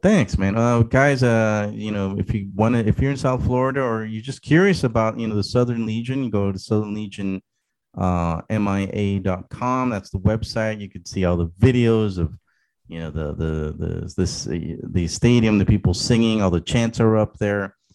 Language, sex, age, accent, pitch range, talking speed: Swedish, male, 30-49, American, 90-115 Hz, 200 wpm